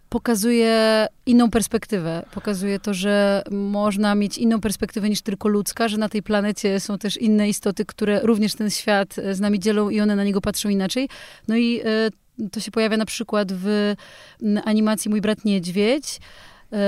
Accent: native